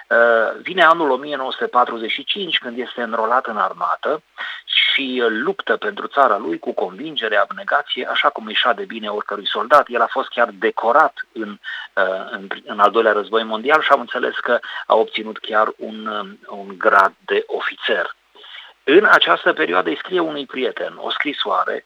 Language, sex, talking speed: Romanian, male, 155 wpm